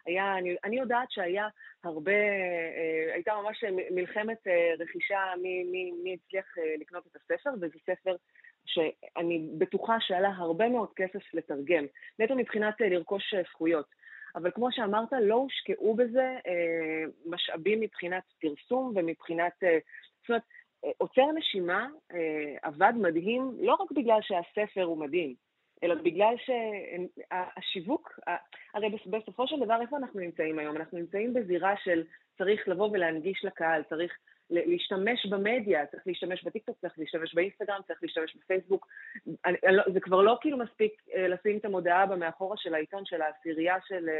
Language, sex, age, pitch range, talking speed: Hebrew, female, 30-49, 170-215 Hz, 145 wpm